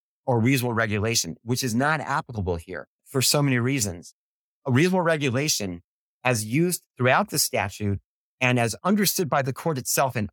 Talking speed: 165 wpm